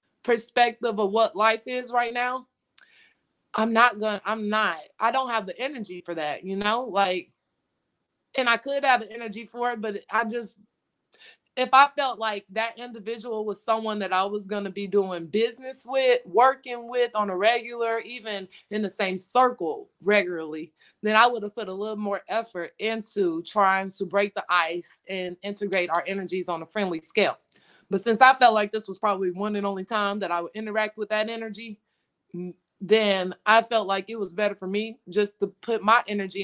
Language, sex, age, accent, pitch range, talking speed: English, female, 20-39, American, 185-225 Hz, 195 wpm